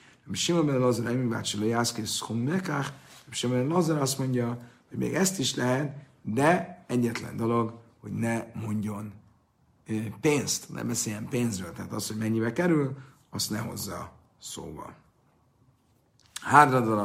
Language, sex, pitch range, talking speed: Hungarian, male, 105-125 Hz, 100 wpm